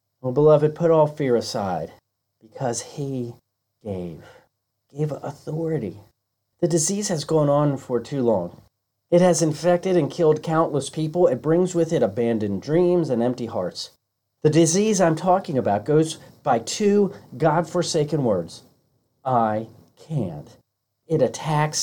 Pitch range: 120-175 Hz